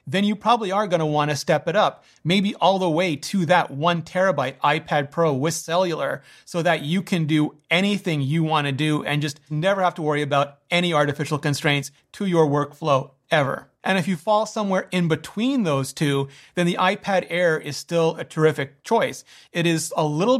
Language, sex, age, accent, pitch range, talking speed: English, male, 30-49, American, 150-185 Hz, 195 wpm